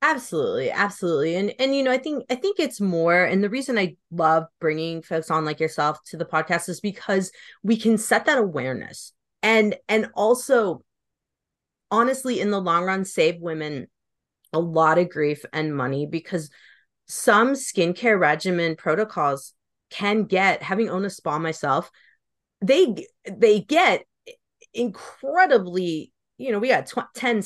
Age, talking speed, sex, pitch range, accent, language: 30-49, 155 wpm, female, 160-220 Hz, American, English